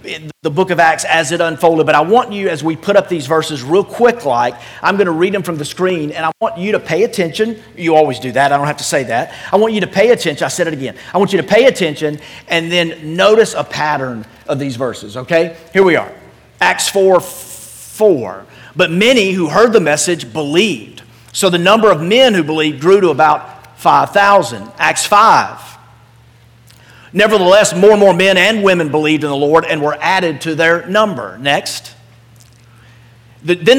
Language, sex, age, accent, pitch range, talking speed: English, male, 40-59, American, 145-195 Hz, 205 wpm